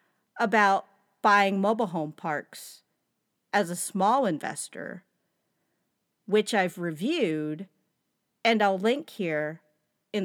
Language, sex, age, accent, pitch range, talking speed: English, female, 40-59, American, 180-265 Hz, 100 wpm